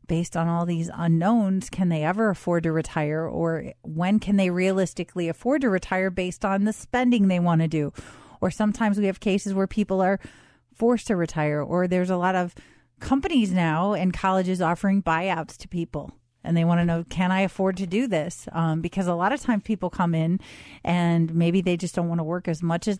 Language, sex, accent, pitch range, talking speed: English, female, American, 170-195 Hz, 215 wpm